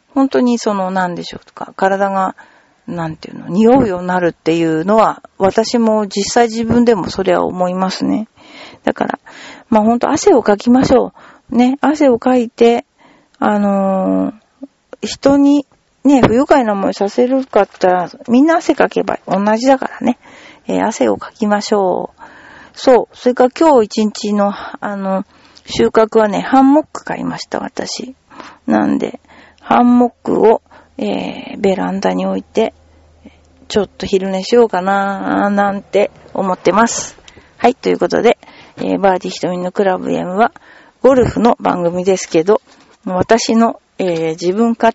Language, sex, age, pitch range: Japanese, female, 40-59, 185-250 Hz